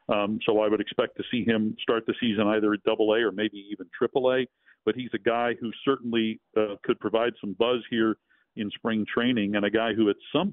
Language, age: English, 50-69